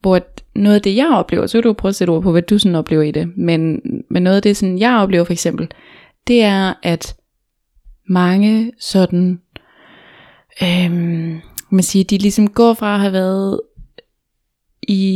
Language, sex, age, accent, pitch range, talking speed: Danish, female, 20-39, native, 180-210 Hz, 190 wpm